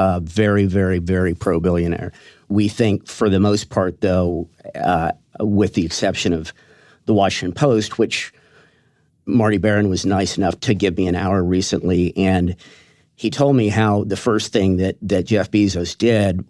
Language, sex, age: English, male, 50-69